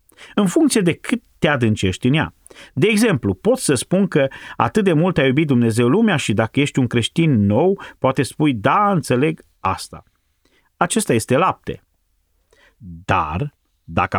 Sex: male